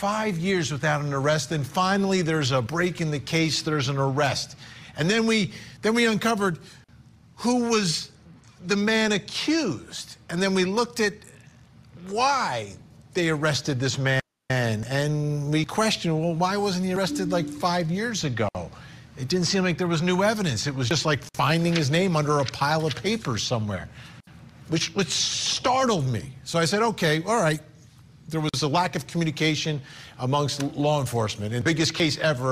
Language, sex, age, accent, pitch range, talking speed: English, male, 50-69, American, 135-180 Hz, 170 wpm